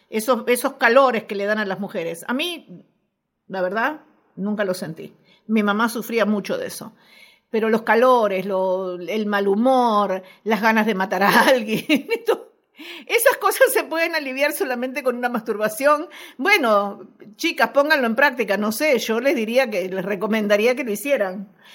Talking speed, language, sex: 165 wpm, Spanish, female